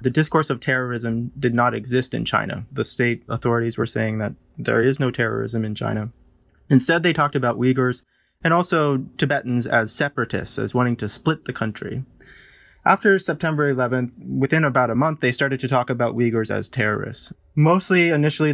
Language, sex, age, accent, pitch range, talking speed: English, male, 20-39, American, 115-140 Hz, 175 wpm